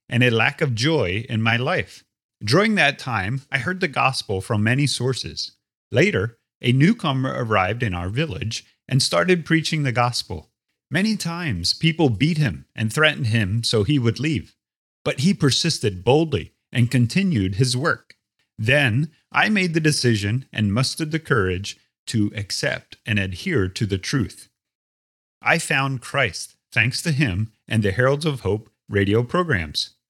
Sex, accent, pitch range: male, American, 105-150 Hz